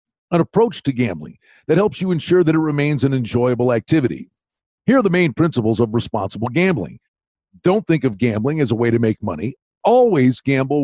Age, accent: 50-69, American